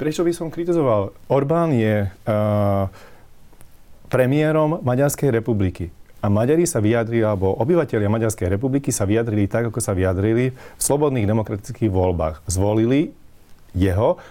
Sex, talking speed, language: male, 125 wpm, Slovak